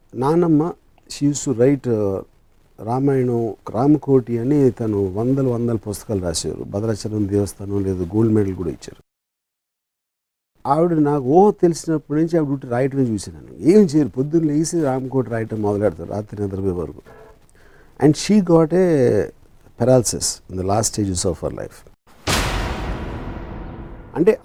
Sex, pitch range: male, 110-155 Hz